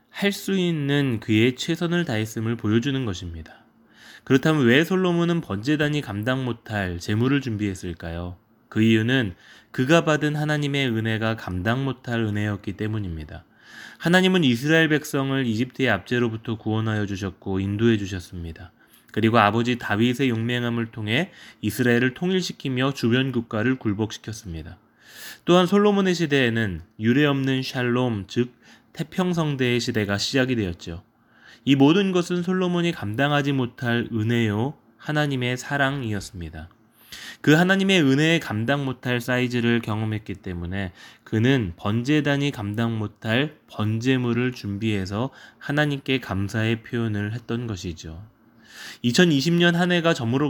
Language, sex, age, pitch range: Korean, male, 20-39, 110-140 Hz